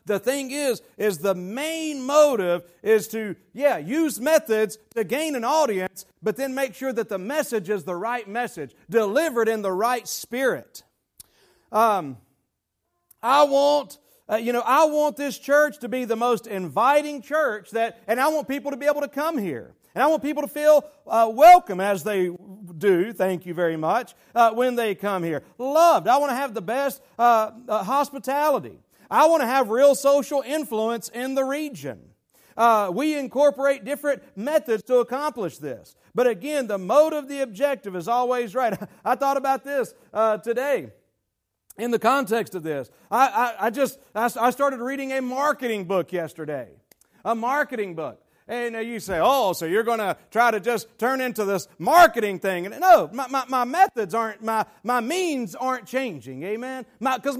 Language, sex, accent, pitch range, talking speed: English, male, American, 210-280 Hz, 180 wpm